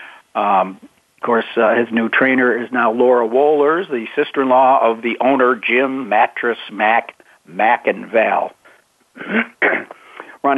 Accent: American